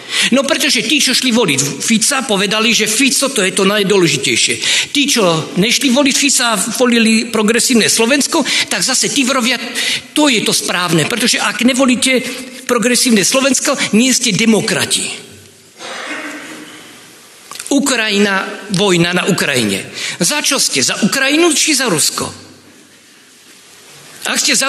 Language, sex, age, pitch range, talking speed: Slovak, male, 50-69, 220-275 Hz, 130 wpm